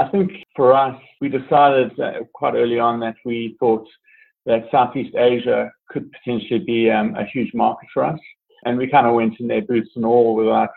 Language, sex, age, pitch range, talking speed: English, male, 30-49, 115-160 Hz, 195 wpm